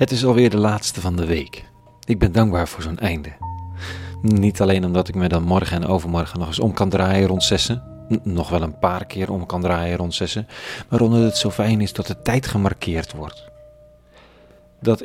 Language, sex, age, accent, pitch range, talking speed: Dutch, male, 40-59, Dutch, 90-110 Hz, 205 wpm